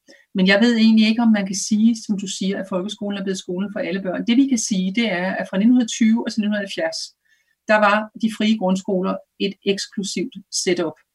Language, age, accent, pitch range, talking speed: Danish, 40-59, native, 185-220 Hz, 215 wpm